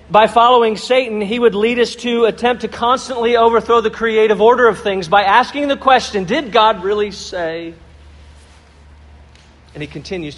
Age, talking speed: 40-59, 160 wpm